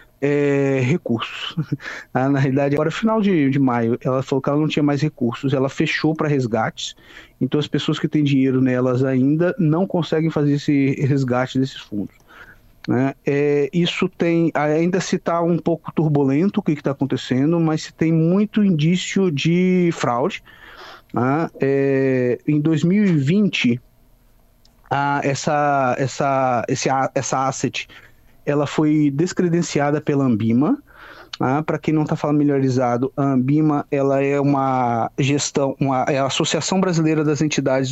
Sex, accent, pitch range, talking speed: male, Brazilian, 135-165 Hz, 145 wpm